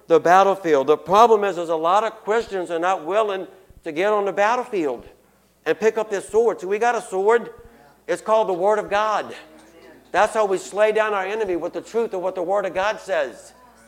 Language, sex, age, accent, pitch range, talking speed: English, male, 60-79, American, 190-225 Hz, 220 wpm